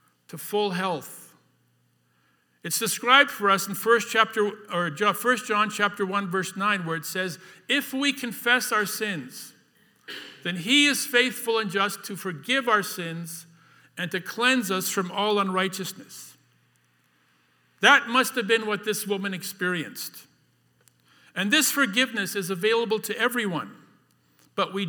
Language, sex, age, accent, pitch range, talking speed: English, male, 50-69, American, 160-230 Hz, 140 wpm